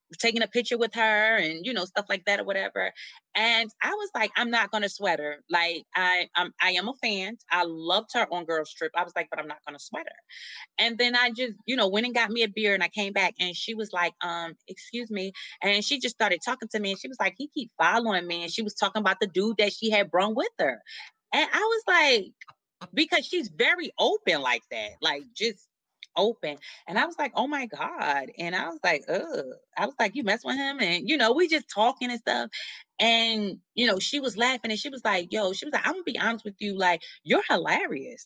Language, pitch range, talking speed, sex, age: English, 180-245 Hz, 250 wpm, female, 20-39